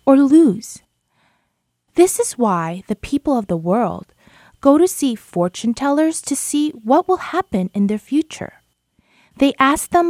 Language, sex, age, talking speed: English, female, 20-39, 155 wpm